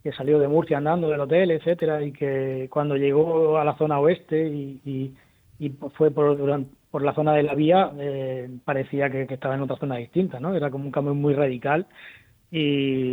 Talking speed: 200 wpm